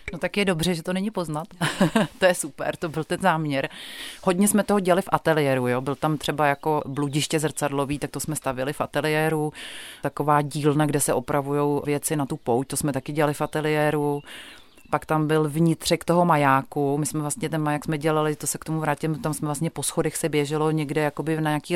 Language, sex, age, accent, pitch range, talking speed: Czech, female, 30-49, native, 145-165 Hz, 210 wpm